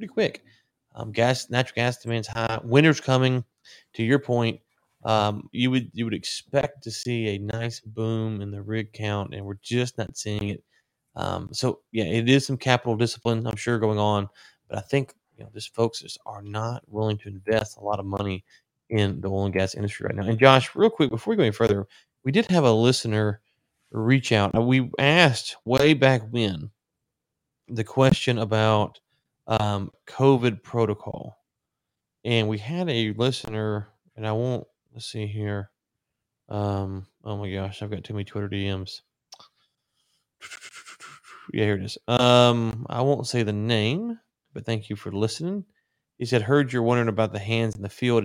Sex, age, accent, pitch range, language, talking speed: male, 30-49, American, 105-125 Hz, English, 180 wpm